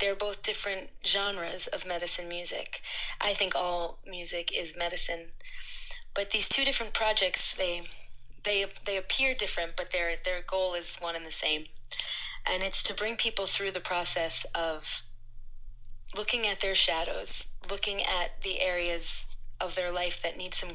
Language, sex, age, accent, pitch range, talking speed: English, female, 30-49, American, 170-200 Hz, 160 wpm